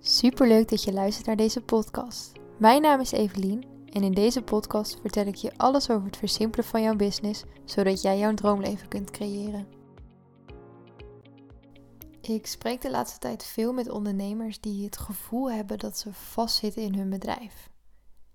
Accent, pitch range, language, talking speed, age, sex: Dutch, 200-225 Hz, Dutch, 165 wpm, 10-29, female